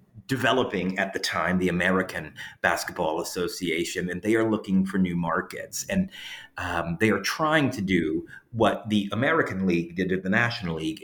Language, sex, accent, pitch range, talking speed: English, male, American, 95-145 Hz, 170 wpm